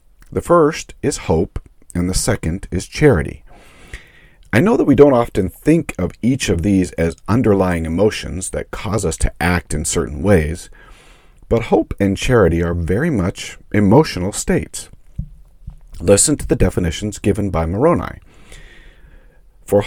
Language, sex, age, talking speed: English, male, 50-69, 145 wpm